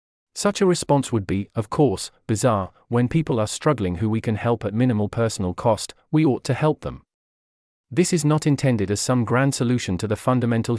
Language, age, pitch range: English, 40-59, 110-145 Hz